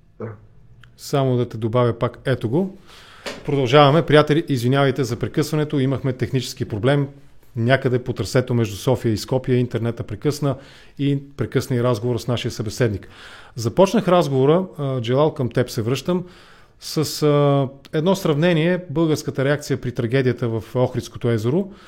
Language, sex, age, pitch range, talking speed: English, male, 30-49, 125-155 Hz, 130 wpm